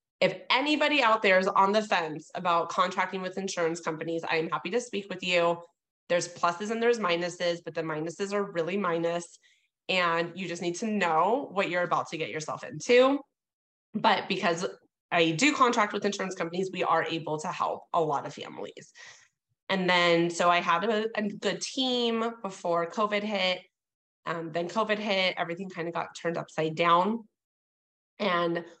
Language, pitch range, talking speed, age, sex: English, 160-195 Hz, 175 wpm, 20-39, female